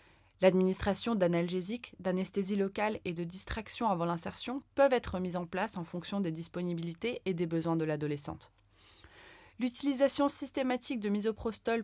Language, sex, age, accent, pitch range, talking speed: French, female, 30-49, French, 170-220 Hz, 135 wpm